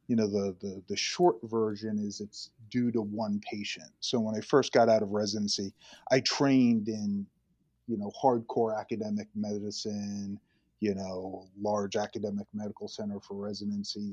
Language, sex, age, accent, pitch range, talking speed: English, male, 30-49, American, 100-120 Hz, 155 wpm